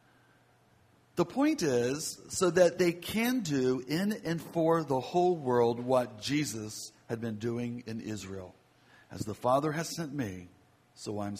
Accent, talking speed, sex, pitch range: American, 155 wpm, male, 115-165 Hz